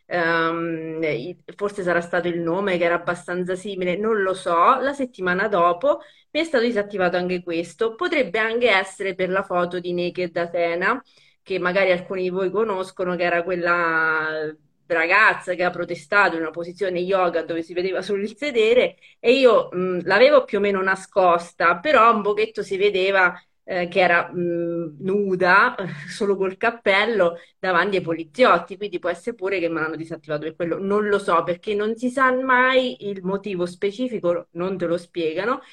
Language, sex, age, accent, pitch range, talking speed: Italian, female, 30-49, native, 175-225 Hz, 170 wpm